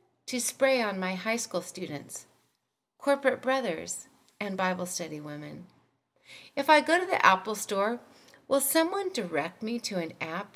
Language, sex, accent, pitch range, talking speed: English, female, American, 175-240 Hz, 155 wpm